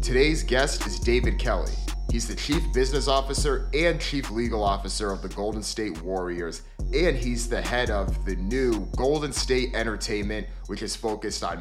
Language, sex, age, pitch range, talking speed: English, male, 30-49, 105-125 Hz, 170 wpm